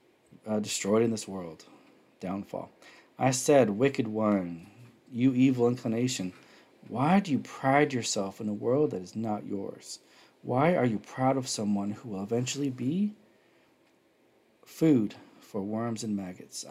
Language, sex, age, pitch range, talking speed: English, male, 40-59, 110-135 Hz, 145 wpm